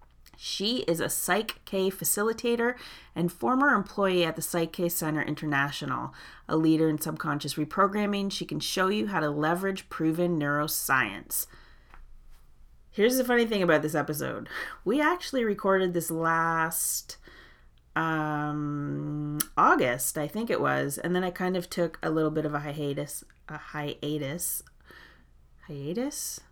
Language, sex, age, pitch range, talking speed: English, female, 30-49, 150-195 Hz, 135 wpm